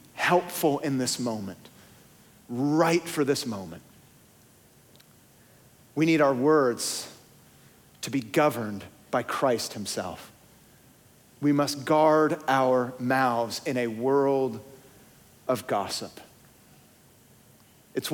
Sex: male